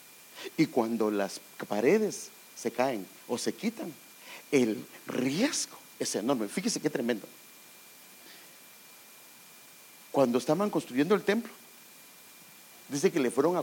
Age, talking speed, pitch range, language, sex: 50-69, 115 wpm, 125-205 Hz, English, male